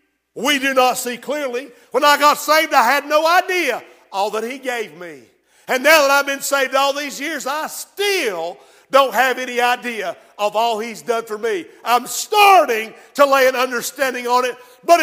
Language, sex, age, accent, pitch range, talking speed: English, male, 50-69, American, 250-320 Hz, 190 wpm